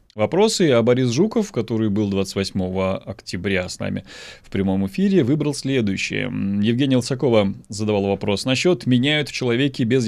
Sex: male